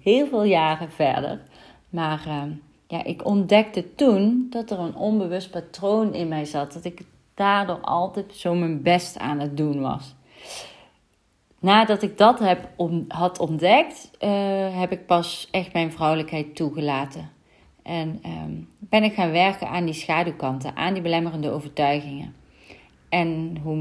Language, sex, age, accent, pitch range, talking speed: Dutch, female, 30-49, Dutch, 155-190 Hz, 140 wpm